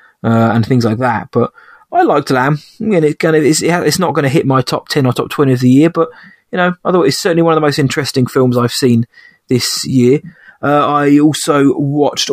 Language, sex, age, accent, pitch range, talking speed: English, male, 20-39, British, 125-150 Hz, 255 wpm